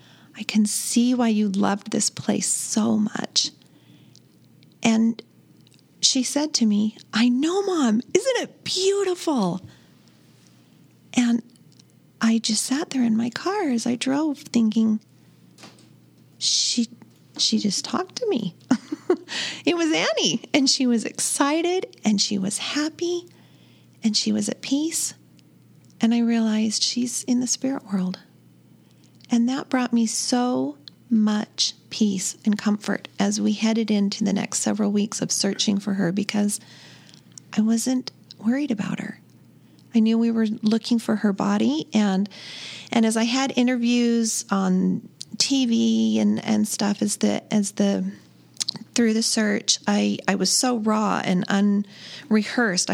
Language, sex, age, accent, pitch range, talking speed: English, female, 40-59, American, 205-245 Hz, 140 wpm